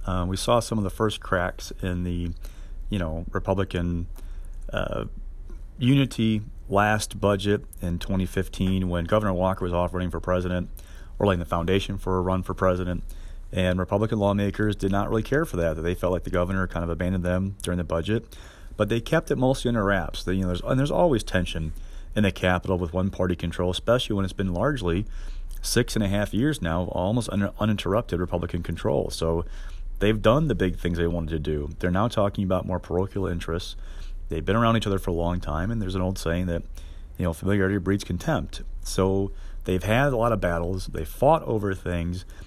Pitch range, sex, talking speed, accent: 85-105 Hz, male, 205 wpm, American